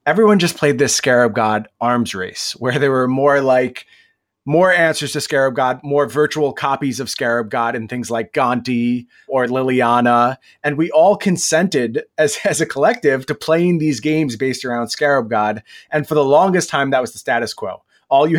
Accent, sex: American, male